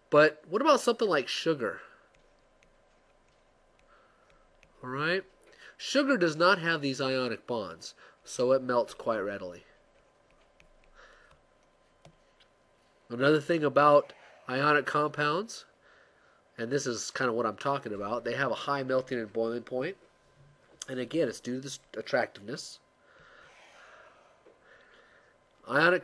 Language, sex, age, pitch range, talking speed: English, male, 30-49, 125-170 Hz, 115 wpm